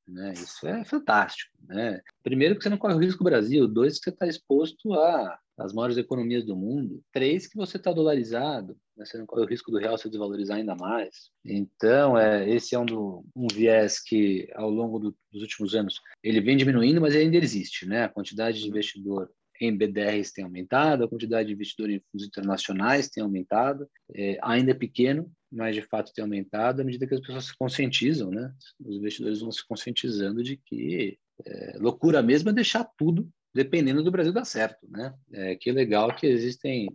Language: Portuguese